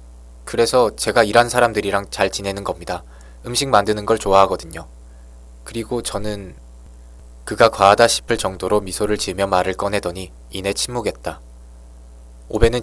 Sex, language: male, Korean